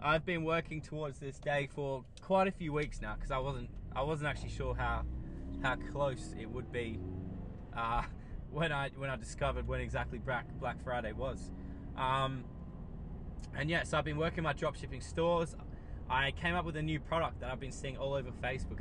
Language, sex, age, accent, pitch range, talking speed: English, male, 20-39, Australian, 115-150 Hz, 200 wpm